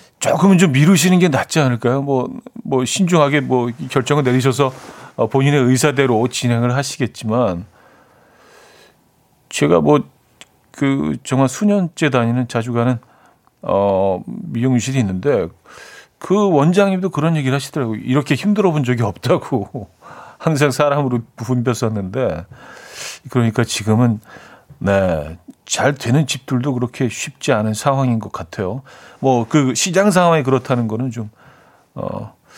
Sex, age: male, 40-59